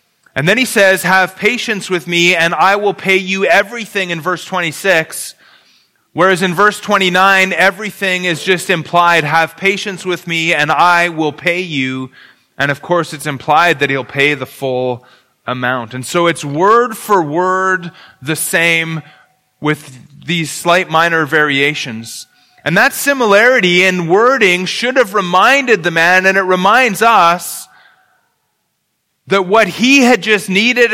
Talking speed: 150 wpm